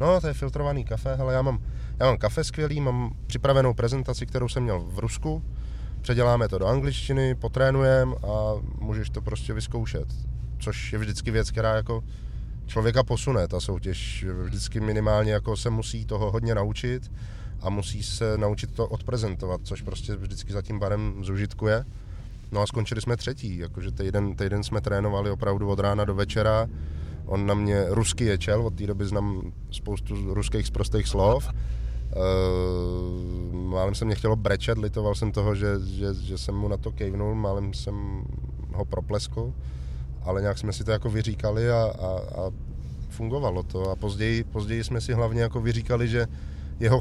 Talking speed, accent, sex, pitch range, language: 165 wpm, native, male, 100-115 Hz, Czech